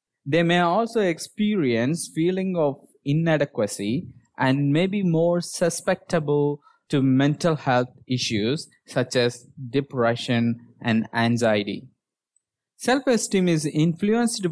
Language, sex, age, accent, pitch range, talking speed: English, male, 20-39, Indian, 115-165 Hz, 100 wpm